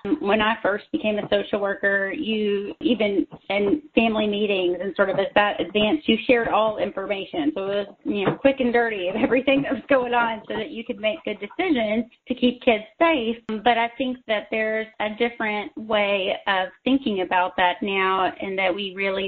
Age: 30-49